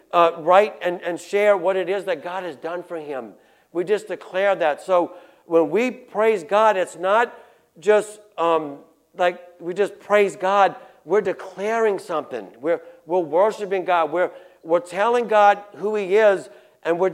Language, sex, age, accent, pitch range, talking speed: English, male, 60-79, American, 180-215 Hz, 170 wpm